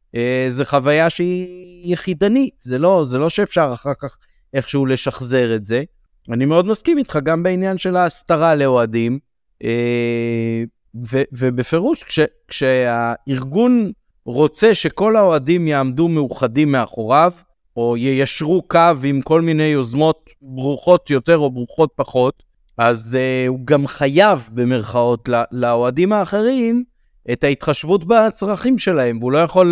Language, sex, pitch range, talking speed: Hebrew, male, 125-165 Hz, 130 wpm